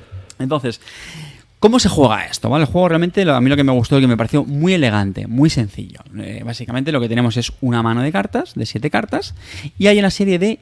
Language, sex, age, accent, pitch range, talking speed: Spanish, male, 20-39, Spanish, 115-155 Hz, 220 wpm